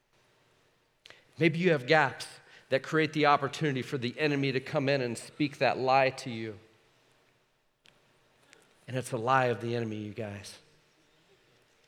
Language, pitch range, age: English, 120-150 Hz, 40-59